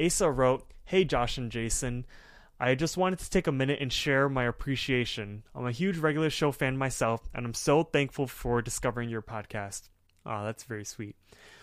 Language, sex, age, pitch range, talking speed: English, male, 20-39, 115-140 Hz, 185 wpm